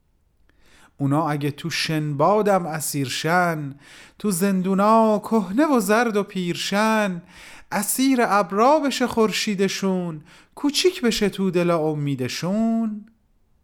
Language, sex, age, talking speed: Persian, male, 30-49, 90 wpm